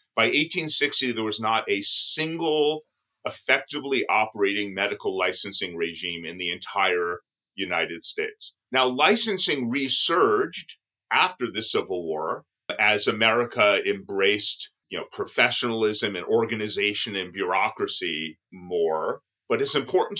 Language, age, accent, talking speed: English, 40-59, American, 115 wpm